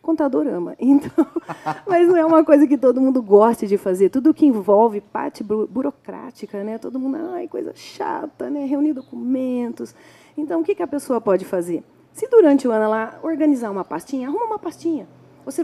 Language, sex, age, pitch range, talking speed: Portuguese, female, 40-59, 215-300 Hz, 180 wpm